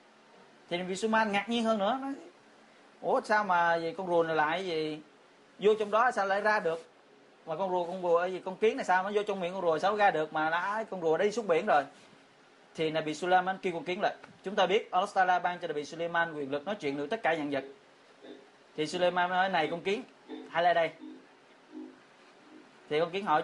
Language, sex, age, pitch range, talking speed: Vietnamese, male, 20-39, 160-205 Hz, 235 wpm